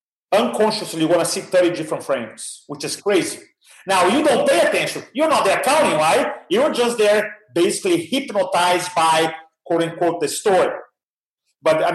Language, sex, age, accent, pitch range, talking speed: English, male, 40-59, Brazilian, 155-205 Hz, 165 wpm